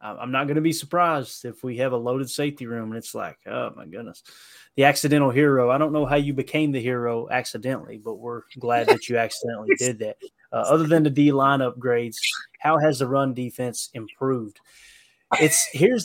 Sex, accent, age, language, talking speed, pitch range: male, American, 20-39, English, 200 wpm, 120-145 Hz